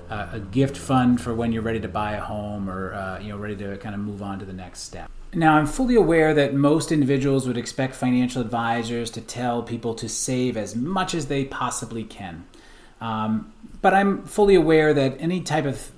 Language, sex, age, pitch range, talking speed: English, male, 30-49, 115-140 Hz, 215 wpm